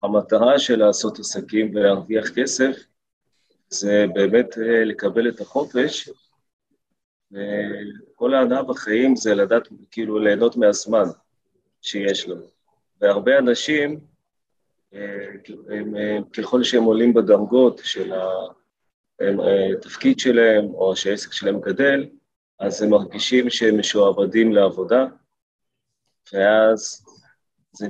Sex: male